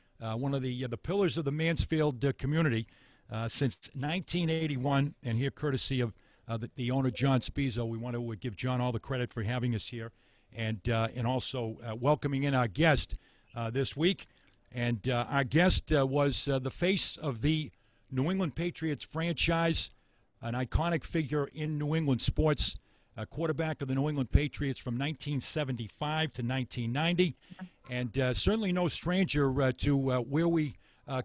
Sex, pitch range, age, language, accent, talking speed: male, 125-155 Hz, 50-69, English, American, 180 wpm